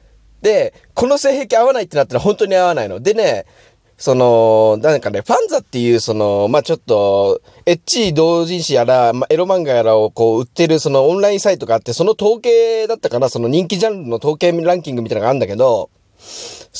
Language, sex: Japanese, male